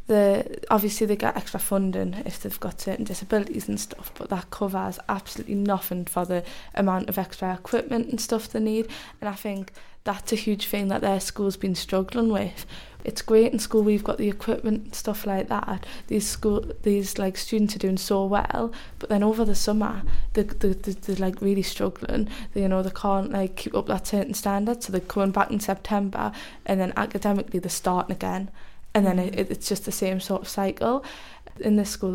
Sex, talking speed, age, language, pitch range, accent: female, 210 wpm, 10-29, English, 190-210 Hz, British